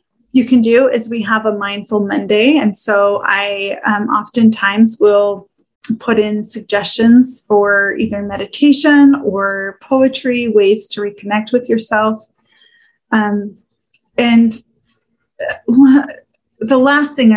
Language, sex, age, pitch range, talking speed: English, female, 20-39, 205-240 Hz, 115 wpm